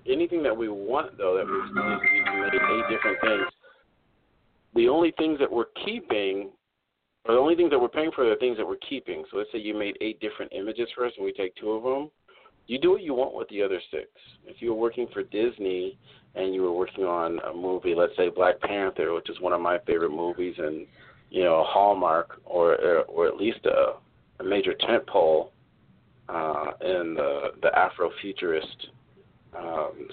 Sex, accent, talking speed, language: male, American, 205 wpm, English